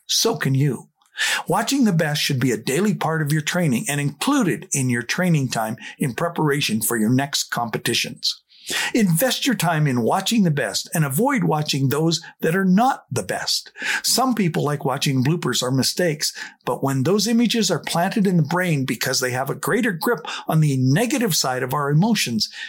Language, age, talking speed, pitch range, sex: English, 50-69, 190 wpm, 140-185 Hz, male